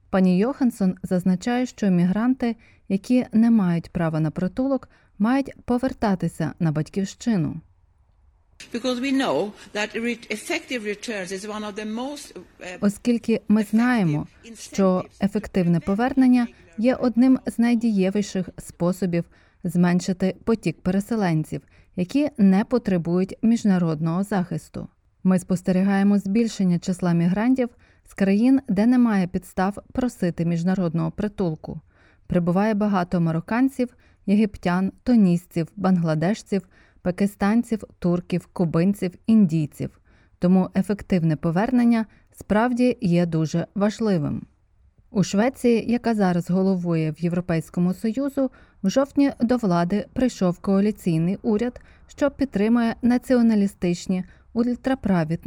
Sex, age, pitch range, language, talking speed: female, 30-49, 180-230 Hz, Ukrainian, 90 wpm